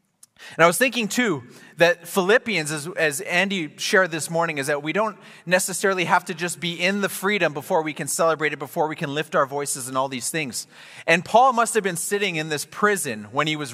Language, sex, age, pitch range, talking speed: English, male, 30-49, 145-190 Hz, 225 wpm